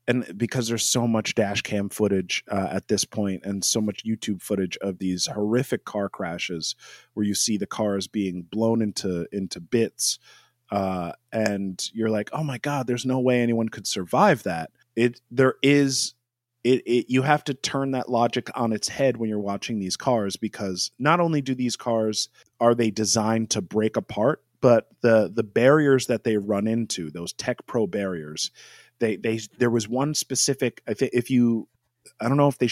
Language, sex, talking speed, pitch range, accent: English, male, 195 wpm, 100-125 Hz, American